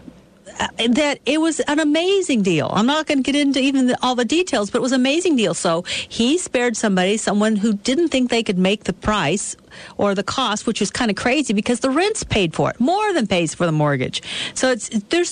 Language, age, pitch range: English, 50-69, 185-280 Hz